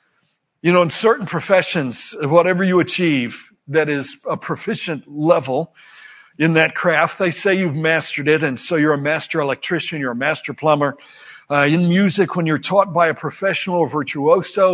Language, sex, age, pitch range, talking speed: English, male, 60-79, 165-210 Hz, 170 wpm